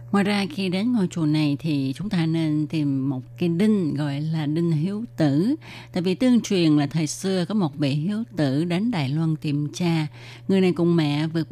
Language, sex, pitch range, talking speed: Vietnamese, female, 150-190 Hz, 220 wpm